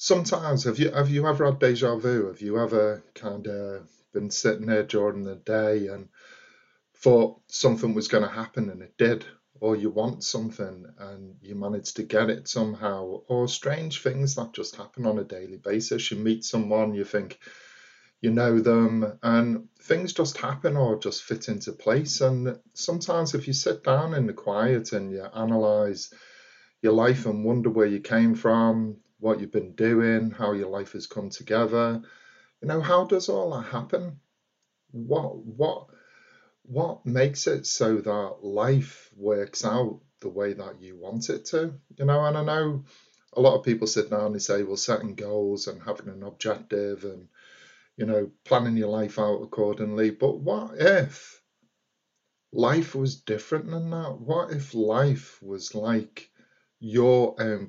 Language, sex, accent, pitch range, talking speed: English, male, British, 105-135 Hz, 175 wpm